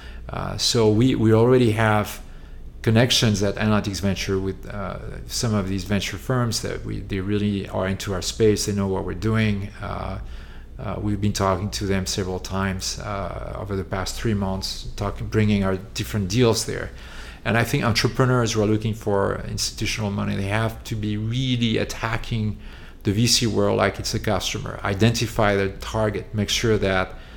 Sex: male